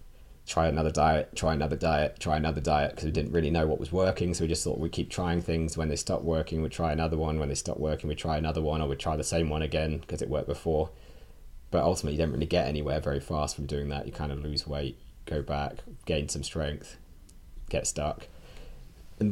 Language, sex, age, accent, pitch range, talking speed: English, male, 20-39, British, 75-95 Hz, 240 wpm